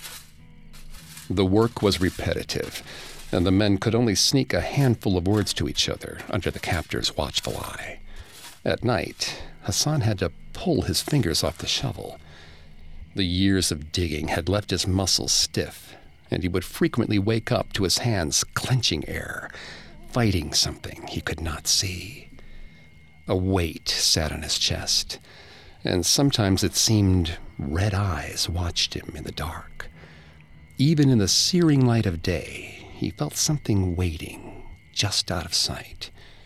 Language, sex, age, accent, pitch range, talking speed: English, male, 50-69, American, 85-105 Hz, 150 wpm